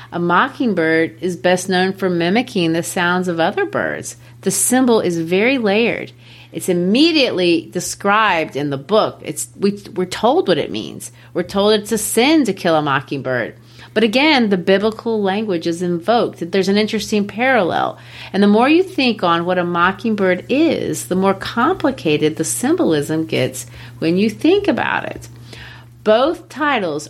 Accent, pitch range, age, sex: American, 165-235 Hz, 40-59, female